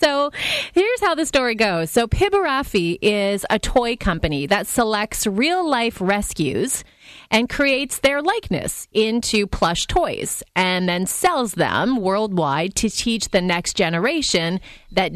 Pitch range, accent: 175-250 Hz, American